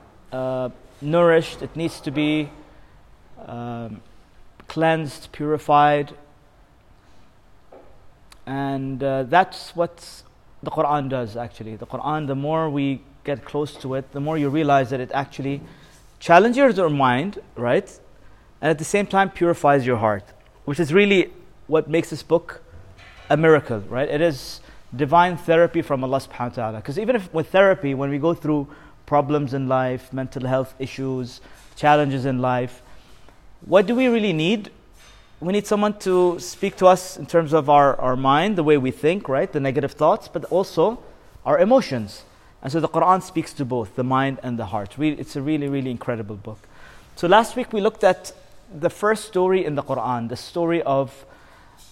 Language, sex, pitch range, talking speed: English, male, 130-170 Hz, 170 wpm